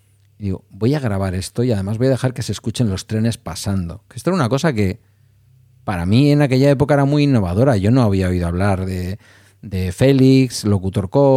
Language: Spanish